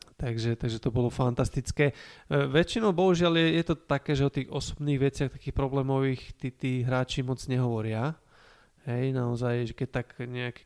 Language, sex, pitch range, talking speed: Slovak, male, 120-135 Hz, 170 wpm